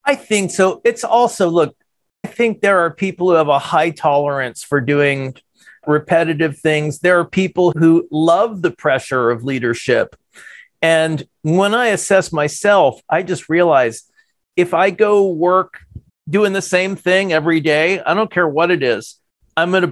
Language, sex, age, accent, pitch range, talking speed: English, male, 40-59, American, 145-185 Hz, 170 wpm